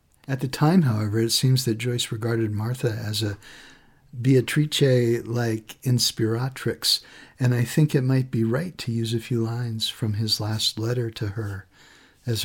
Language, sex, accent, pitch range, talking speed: English, male, American, 105-130 Hz, 160 wpm